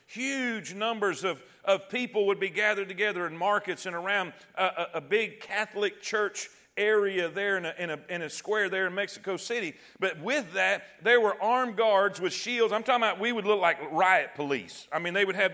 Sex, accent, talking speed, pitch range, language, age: male, American, 200 wpm, 185-225 Hz, English, 40-59